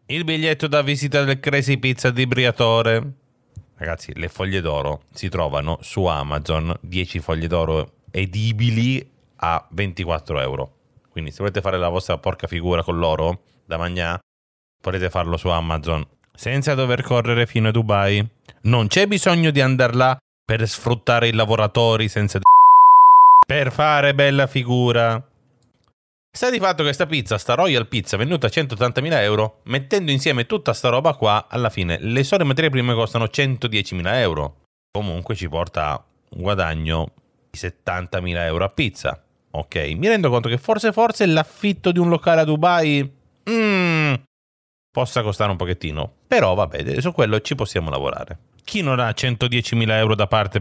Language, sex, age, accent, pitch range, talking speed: Italian, male, 30-49, native, 90-140 Hz, 155 wpm